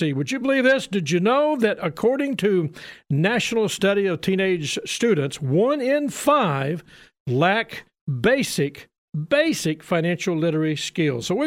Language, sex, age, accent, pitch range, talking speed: English, male, 50-69, American, 170-250 Hz, 135 wpm